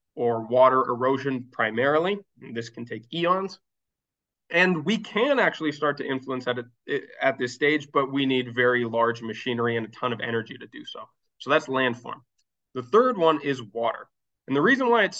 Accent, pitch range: American, 120-155 Hz